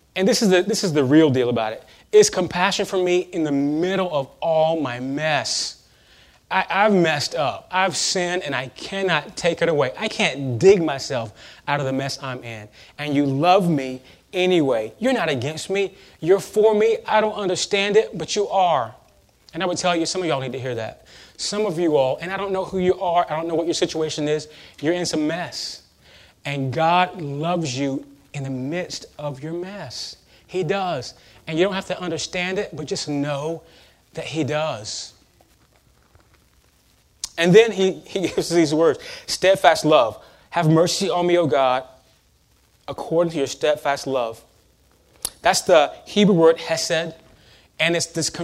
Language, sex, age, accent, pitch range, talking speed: English, male, 30-49, American, 140-185 Hz, 185 wpm